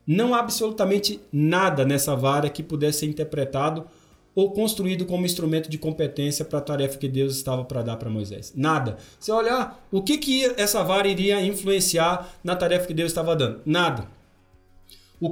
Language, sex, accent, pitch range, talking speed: Portuguese, male, Brazilian, 145-225 Hz, 170 wpm